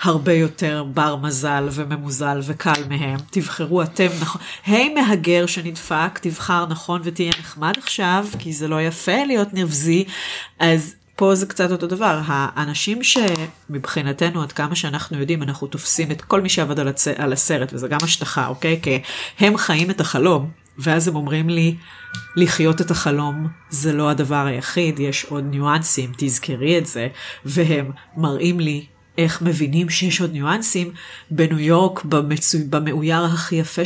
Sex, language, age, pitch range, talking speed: female, Hebrew, 30-49, 145-175 Hz, 155 wpm